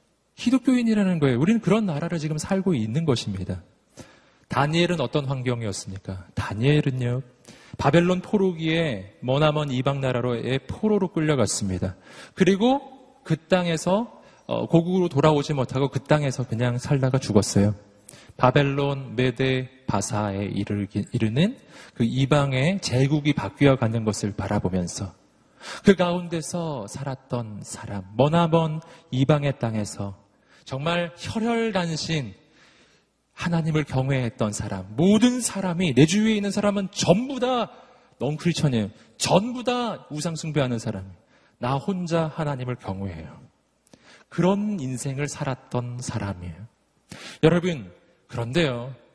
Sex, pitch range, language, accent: male, 120-170 Hz, Korean, native